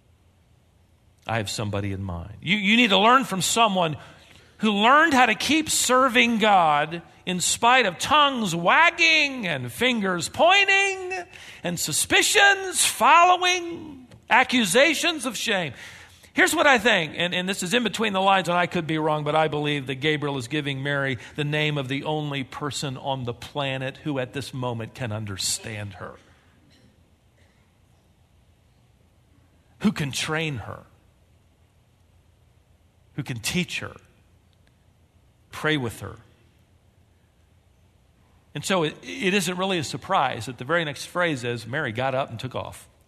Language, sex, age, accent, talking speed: English, male, 50-69, American, 145 wpm